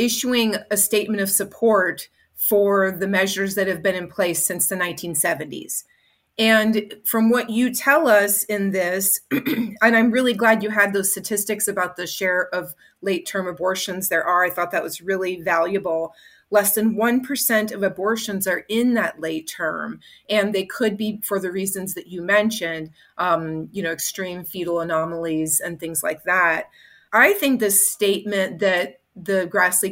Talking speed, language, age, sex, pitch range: 165 wpm, English, 30-49, female, 180-220 Hz